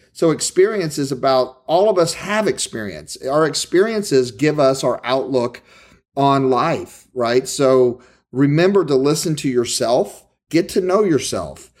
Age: 40-59